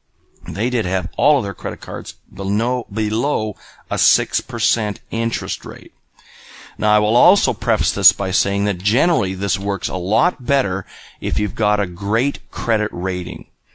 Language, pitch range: English, 90-120 Hz